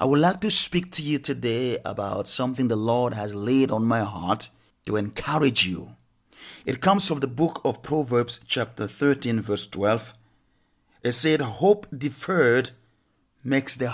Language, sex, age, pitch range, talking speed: English, male, 50-69, 120-150 Hz, 160 wpm